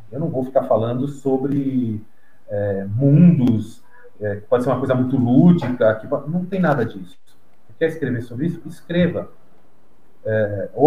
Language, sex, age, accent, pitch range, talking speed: Portuguese, male, 40-59, Brazilian, 120-150 Hz, 160 wpm